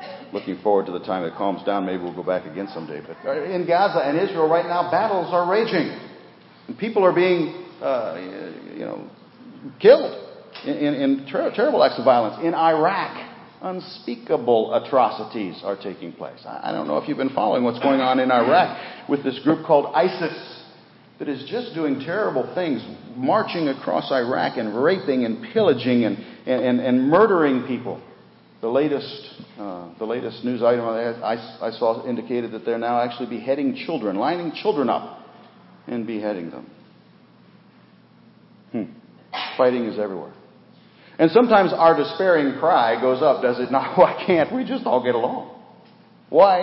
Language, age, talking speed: English, 50-69, 165 wpm